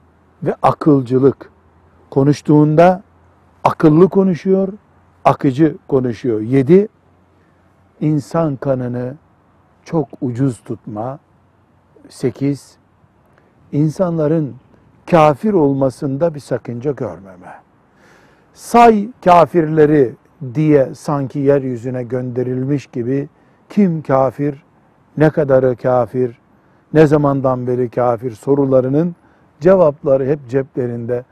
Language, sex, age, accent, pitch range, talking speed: Turkish, male, 60-79, native, 120-155 Hz, 75 wpm